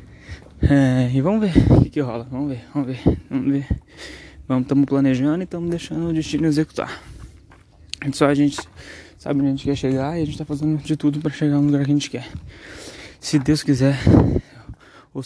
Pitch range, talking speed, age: 125-145 Hz, 195 wpm, 10-29